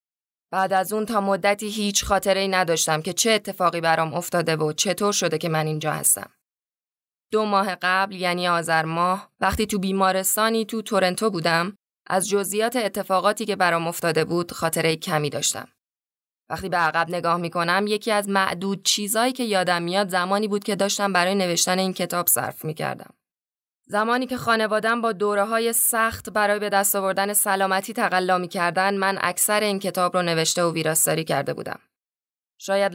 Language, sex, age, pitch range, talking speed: Persian, female, 10-29, 175-210 Hz, 165 wpm